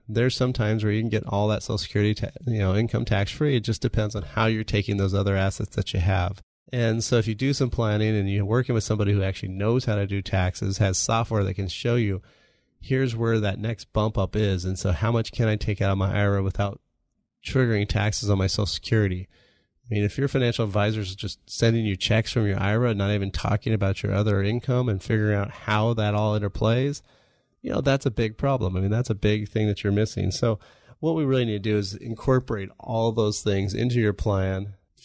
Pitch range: 100-120 Hz